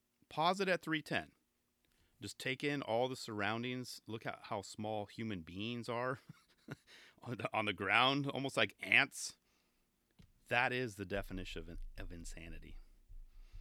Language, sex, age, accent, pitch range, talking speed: English, male, 40-59, American, 95-150 Hz, 135 wpm